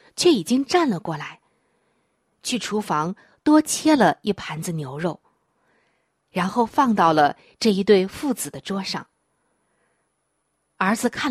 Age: 20-39